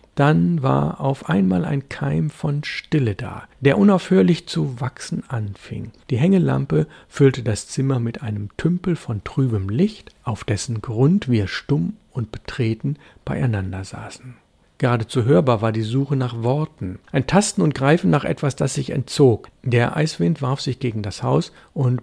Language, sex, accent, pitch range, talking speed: German, male, German, 110-145 Hz, 160 wpm